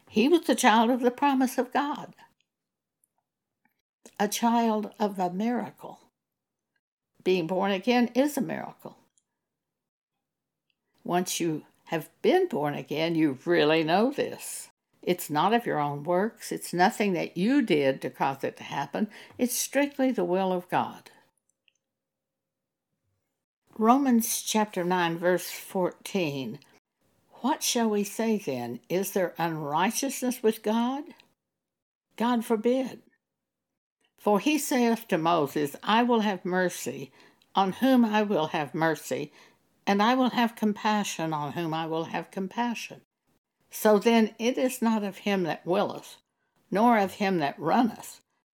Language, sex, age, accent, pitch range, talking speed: English, female, 60-79, American, 175-235 Hz, 135 wpm